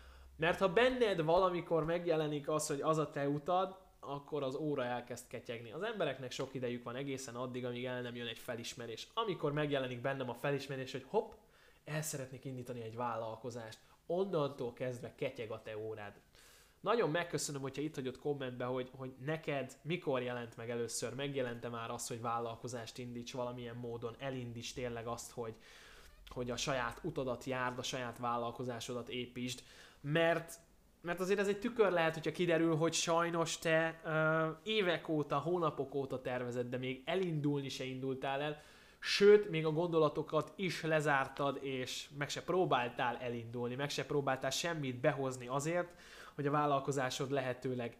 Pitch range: 125-155 Hz